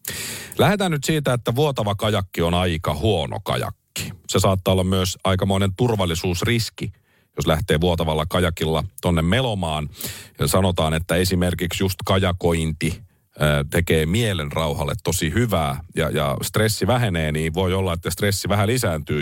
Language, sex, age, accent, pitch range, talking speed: Finnish, male, 40-59, native, 90-125 Hz, 135 wpm